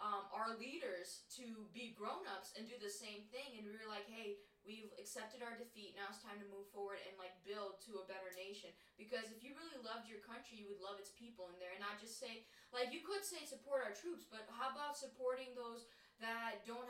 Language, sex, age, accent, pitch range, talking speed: English, female, 10-29, American, 200-240 Hz, 230 wpm